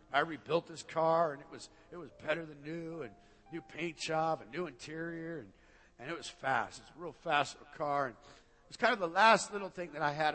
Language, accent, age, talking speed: English, American, 50-69, 245 wpm